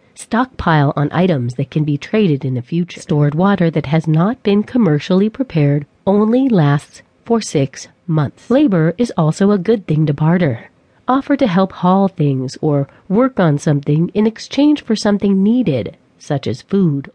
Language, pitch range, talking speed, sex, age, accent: English, 150-205 Hz, 170 wpm, female, 40-59, American